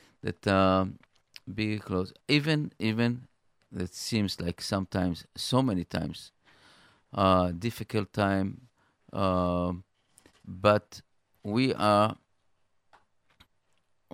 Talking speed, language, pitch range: 85 wpm, English, 95-110 Hz